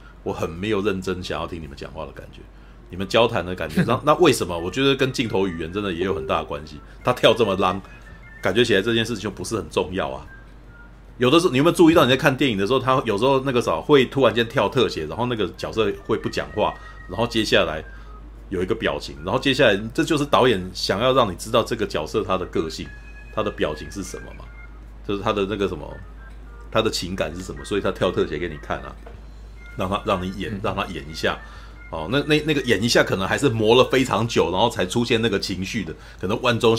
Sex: male